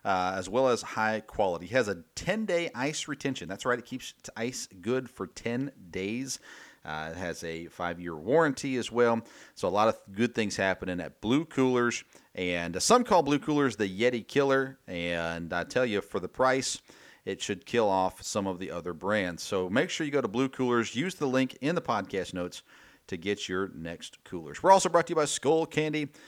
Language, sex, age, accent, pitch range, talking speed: English, male, 40-59, American, 95-135 Hz, 210 wpm